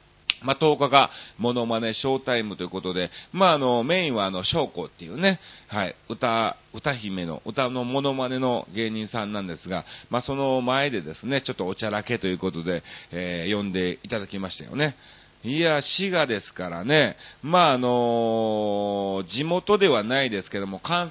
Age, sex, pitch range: 40-59, male, 105-155 Hz